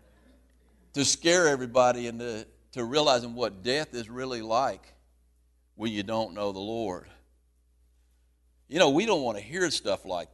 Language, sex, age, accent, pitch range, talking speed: English, male, 60-79, American, 110-155 Hz, 150 wpm